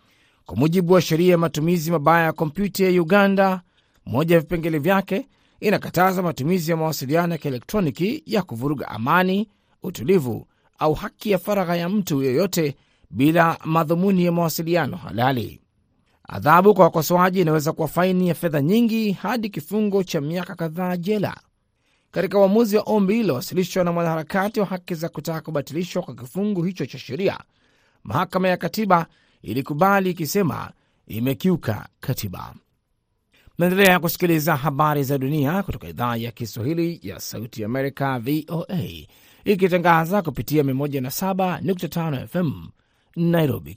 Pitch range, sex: 145-185 Hz, male